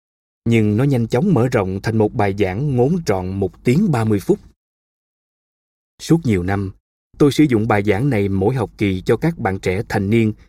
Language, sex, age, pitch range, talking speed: Vietnamese, male, 20-39, 100-150 Hz, 200 wpm